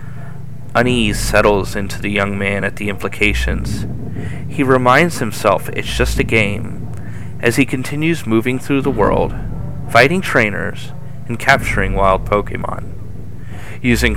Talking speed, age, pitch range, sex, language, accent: 125 wpm, 30-49, 100-125 Hz, male, English, American